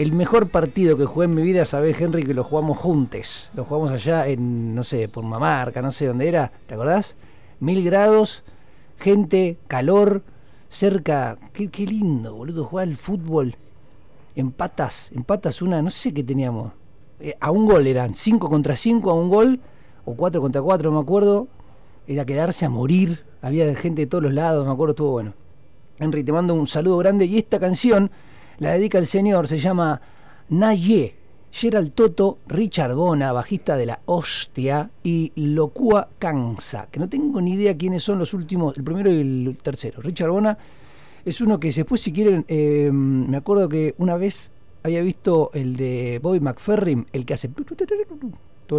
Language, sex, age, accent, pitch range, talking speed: Spanish, male, 40-59, Argentinian, 135-190 Hz, 180 wpm